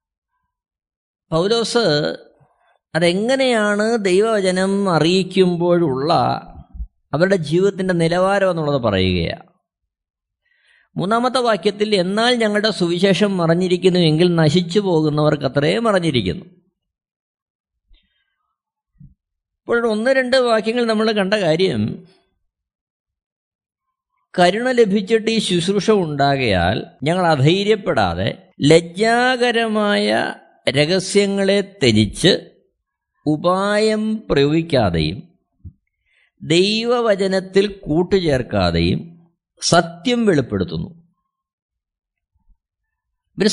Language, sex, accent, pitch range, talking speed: Malayalam, male, native, 165-220 Hz, 60 wpm